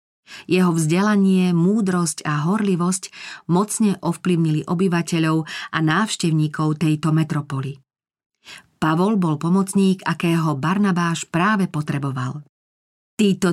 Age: 40-59